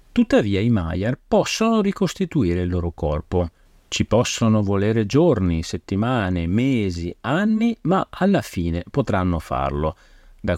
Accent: native